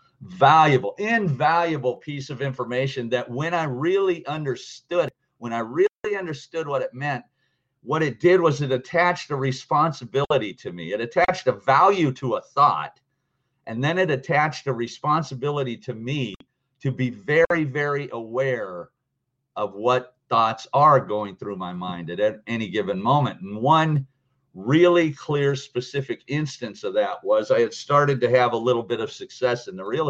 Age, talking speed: 50-69, 160 wpm